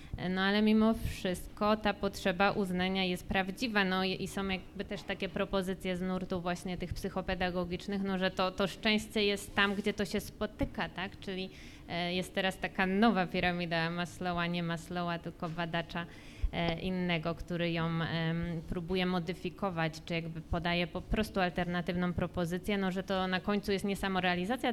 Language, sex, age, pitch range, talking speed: Polish, female, 20-39, 175-205 Hz, 155 wpm